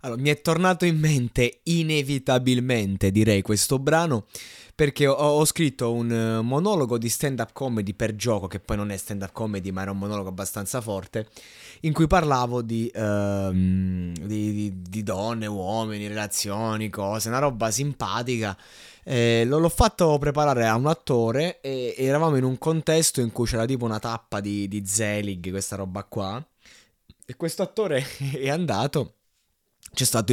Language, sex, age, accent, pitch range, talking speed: Italian, male, 20-39, native, 105-135 Hz, 160 wpm